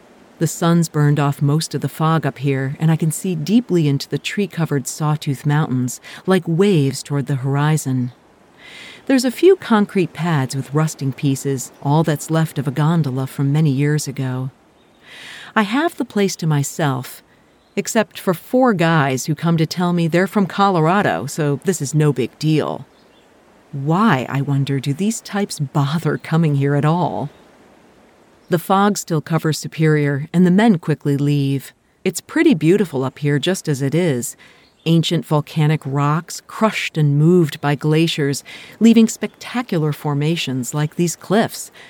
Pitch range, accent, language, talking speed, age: 140-180 Hz, American, English, 160 wpm, 40-59